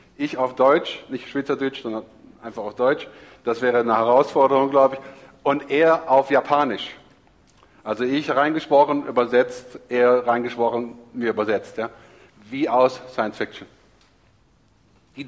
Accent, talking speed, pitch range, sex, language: German, 125 wpm, 115-140 Hz, male, English